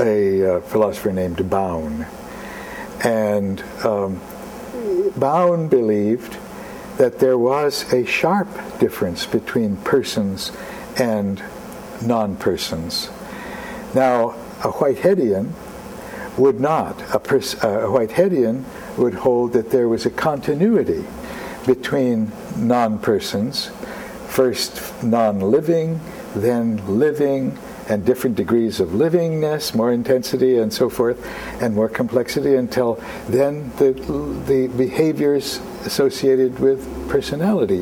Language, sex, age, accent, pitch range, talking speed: English, male, 60-79, American, 115-165 Hz, 100 wpm